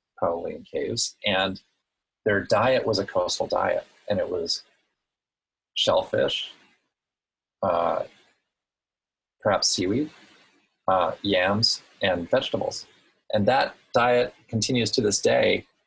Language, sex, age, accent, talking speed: English, male, 30-49, American, 105 wpm